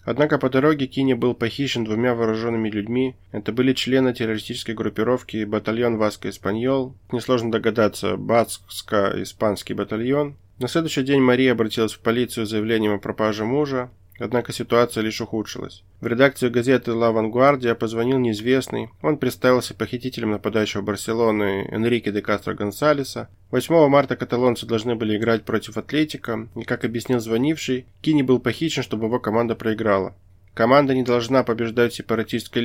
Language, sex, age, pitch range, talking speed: Russian, male, 20-39, 105-125 Hz, 140 wpm